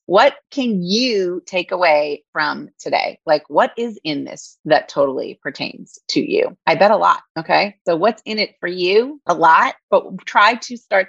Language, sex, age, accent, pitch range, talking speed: English, female, 30-49, American, 170-225 Hz, 185 wpm